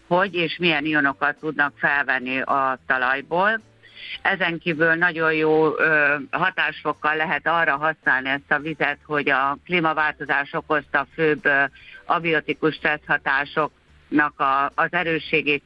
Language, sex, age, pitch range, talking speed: Hungarian, female, 60-79, 140-165 Hz, 105 wpm